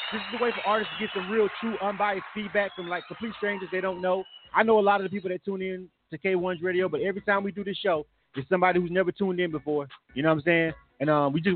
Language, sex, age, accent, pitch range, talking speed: English, male, 30-49, American, 175-210 Hz, 290 wpm